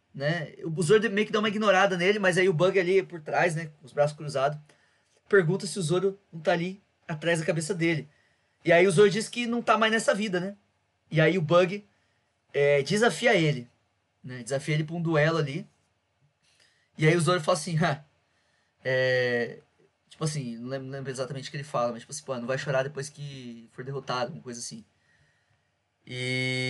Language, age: Portuguese, 20-39